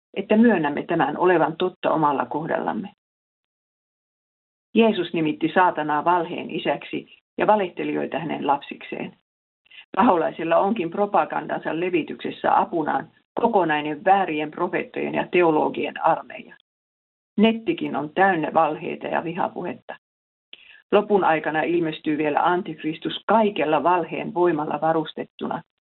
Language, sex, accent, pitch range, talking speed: Finnish, female, native, 155-205 Hz, 100 wpm